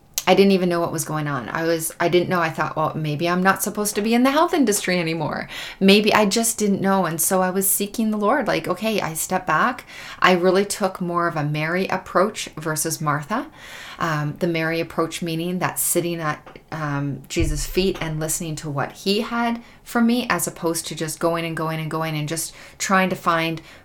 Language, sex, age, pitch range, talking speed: English, female, 30-49, 155-185 Hz, 215 wpm